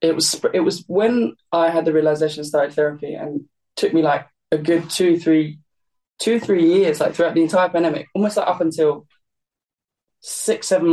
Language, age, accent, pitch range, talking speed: English, 20-39, British, 155-195 Hz, 180 wpm